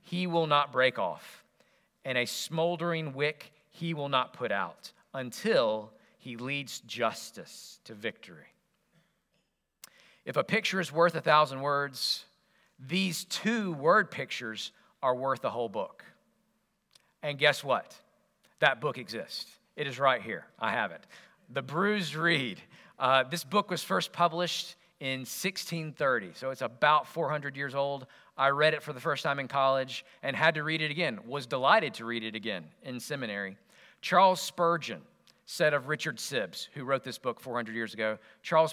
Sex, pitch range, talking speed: male, 130-170 Hz, 160 wpm